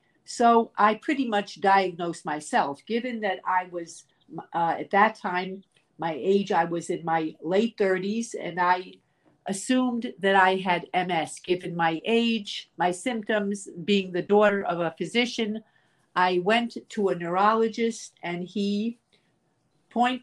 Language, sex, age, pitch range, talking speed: English, female, 50-69, 175-220 Hz, 140 wpm